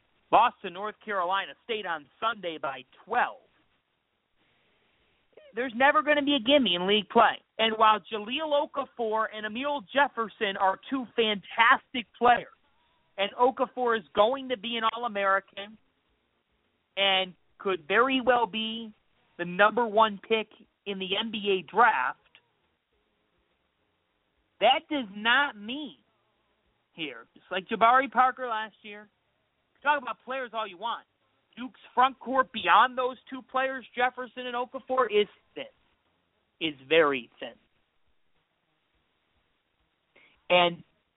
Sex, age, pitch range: male, 30-49, 195-250 Hz